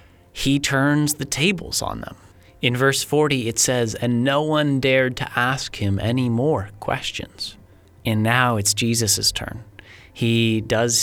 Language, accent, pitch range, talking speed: English, American, 110-130 Hz, 150 wpm